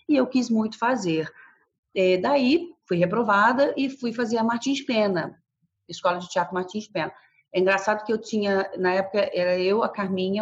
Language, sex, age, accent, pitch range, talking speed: Portuguese, female, 40-59, Brazilian, 185-275 Hz, 180 wpm